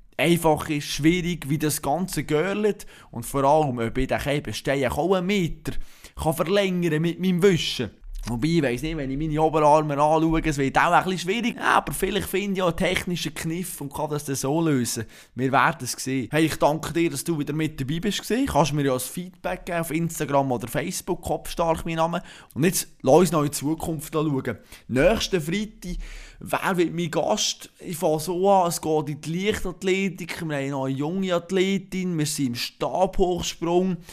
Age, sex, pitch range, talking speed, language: 20-39, male, 145-175 Hz, 195 wpm, German